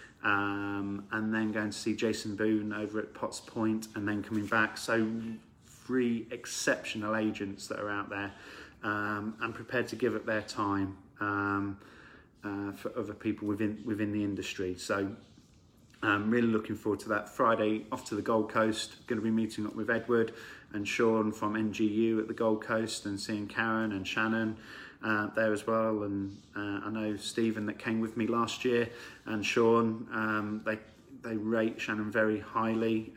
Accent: British